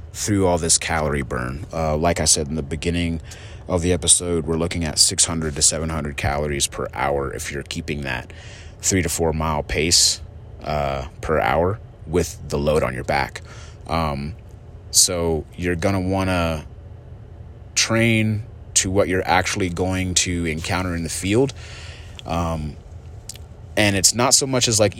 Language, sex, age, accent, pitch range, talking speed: English, male, 30-49, American, 80-100 Hz, 165 wpm